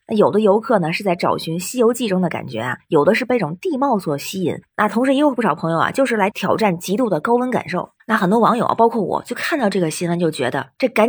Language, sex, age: Chinese, female, 20-39